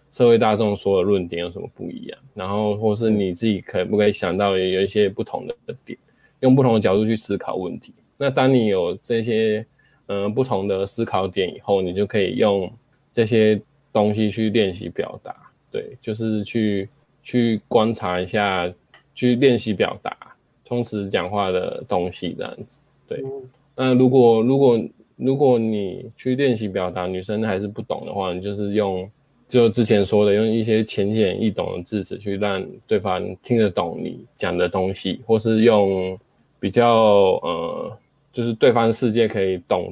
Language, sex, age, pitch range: Chinese, male, 20-39, 100-120 Hz